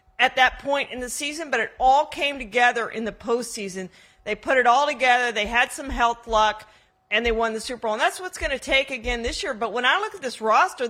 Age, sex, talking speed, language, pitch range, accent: 40-59, female, 255 wpm, English, 215-280 Hz, American